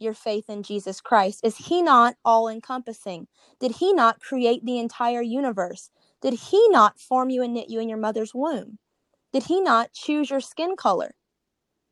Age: 20-39